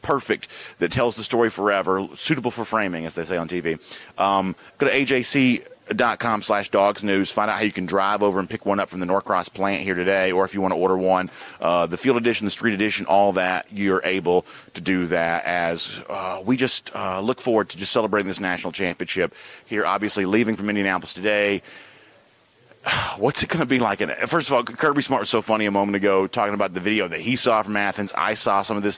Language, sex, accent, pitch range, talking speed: English, male, American, 90-105 Hz, 225 wpm